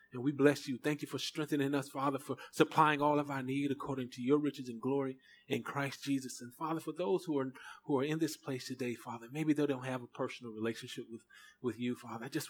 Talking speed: 245 wpm